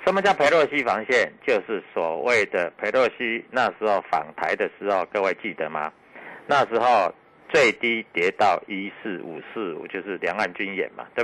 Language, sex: Chinese, male